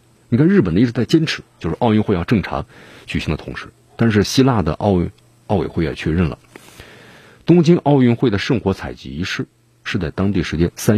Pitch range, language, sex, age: 100-130 Hz, Chinese, male, 50-69